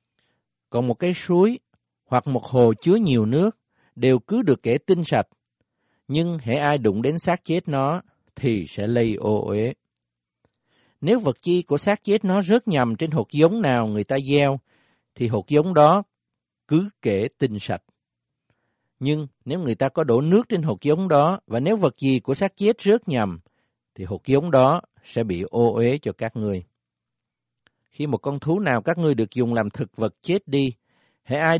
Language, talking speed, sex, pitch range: Vietnamese, 190 wpm, male, 115-165 Hz